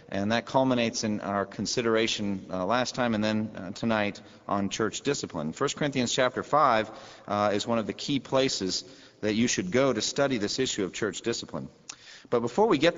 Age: 40-59